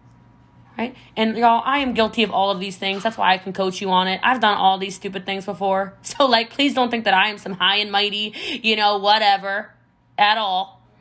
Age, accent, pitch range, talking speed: 20-39, American, 185-225 Hz, 235 wpm